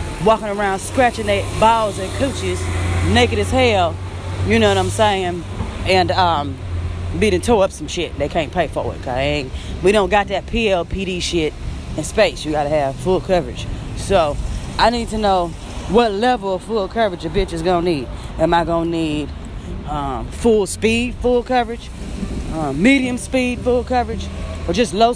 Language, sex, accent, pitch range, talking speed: English, female, American, 135-195 Hz, 180 wpm